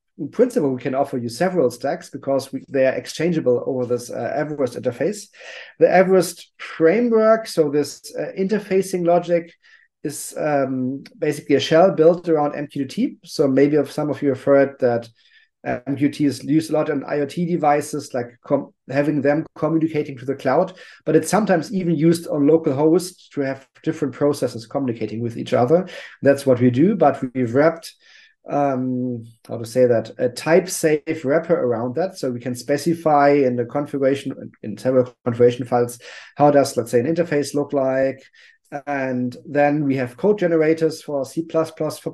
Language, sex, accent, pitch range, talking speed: English, male, German, 135-165 Hz, 170 wpm